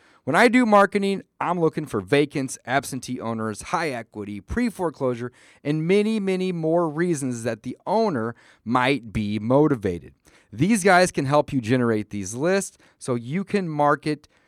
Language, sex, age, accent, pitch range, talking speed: English, male, 30-49, American, 120-175 Hz, 150 wpm